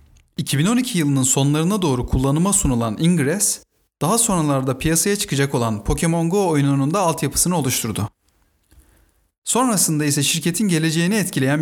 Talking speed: 120 wpm